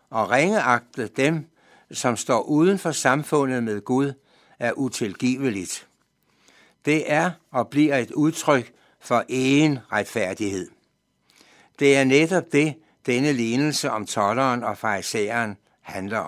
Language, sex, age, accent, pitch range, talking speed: Danish, male, 60-79, native, 120-155 Hz, 120 wpm